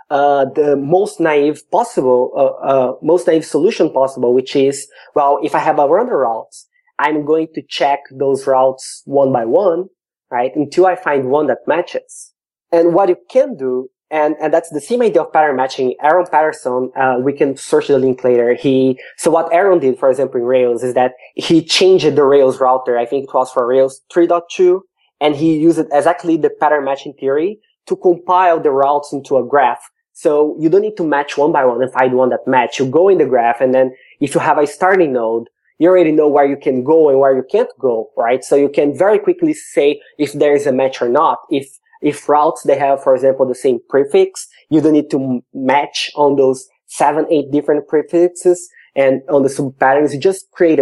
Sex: male